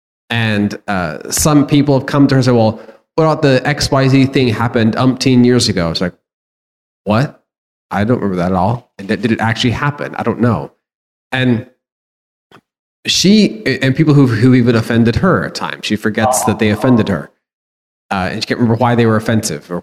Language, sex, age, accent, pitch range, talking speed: English, male, 30-49, American, 105-135 Hz, 195 wpm